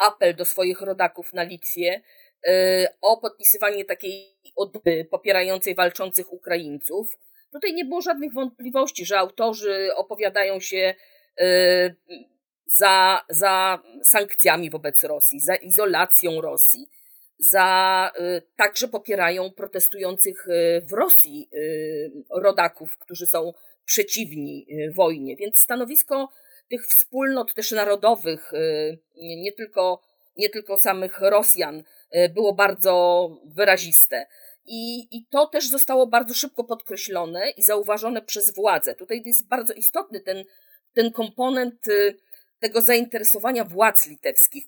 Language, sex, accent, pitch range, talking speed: Polish, female, native, 180-240 Hz, 105 wpm